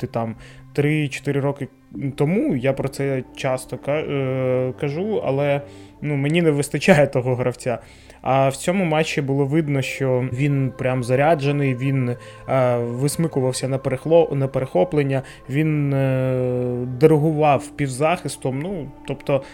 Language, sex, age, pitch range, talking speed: Ukrainian, male, 20-39, 130-155 Hz, 120 wpm